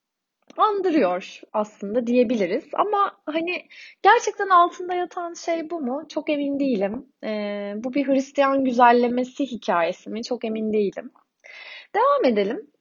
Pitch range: 210-295 Hz